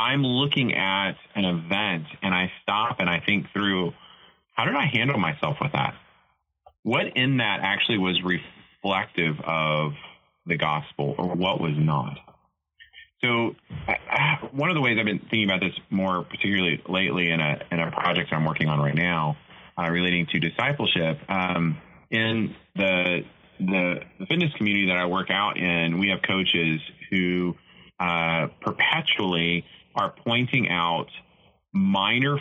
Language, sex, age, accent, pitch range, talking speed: English, male, 30-49, American, 85-110 Hz, 150 wpm